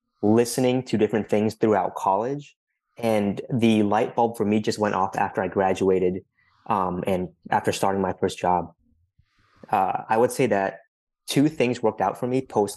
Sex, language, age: male, English, 20-39